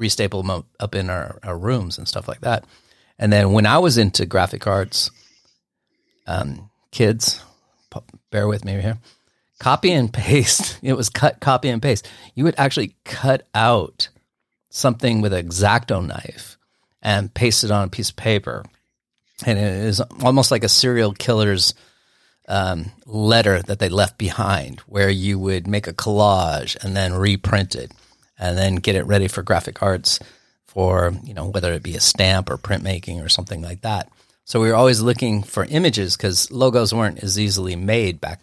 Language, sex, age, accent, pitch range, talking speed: English, male, 30-49, American, 95-115 Hz, 175 wpm